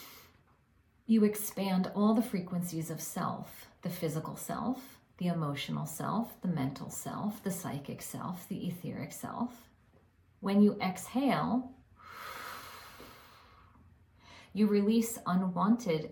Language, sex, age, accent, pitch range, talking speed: English, female, 40-59, American, 160-225 Hz, 105 wpm